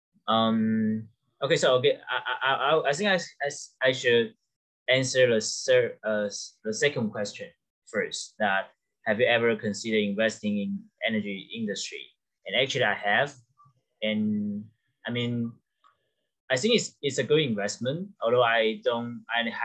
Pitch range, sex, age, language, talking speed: 110-150 Hz, male, 20-39, English, 135 wpm